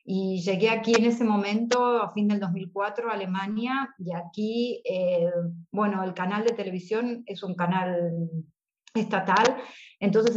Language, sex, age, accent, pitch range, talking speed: Spanish, female, 30-49, Argentinian, 185-235 Hz, 145 wpm